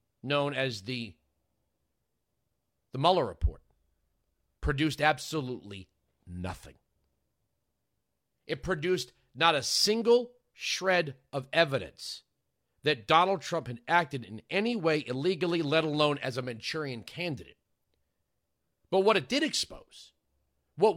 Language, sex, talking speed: English, male, 110 wpm